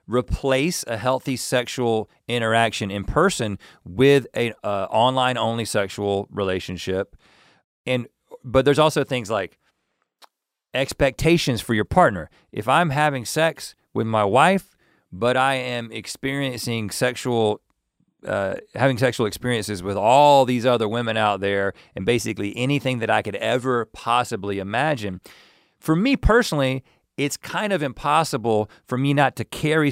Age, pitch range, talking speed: 40-59, 110-140 Hz, 135 wpm